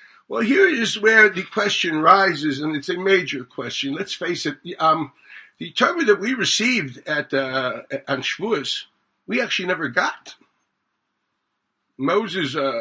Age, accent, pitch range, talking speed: 60-79, American, 155-220 Hz, 145 wpm